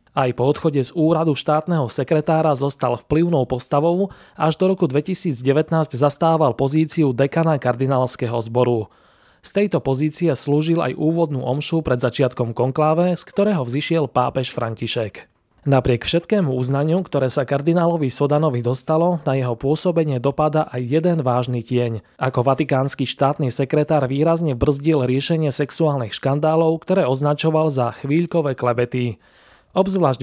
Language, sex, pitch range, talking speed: Slovak, male, 130-160 Hz, 130 wpm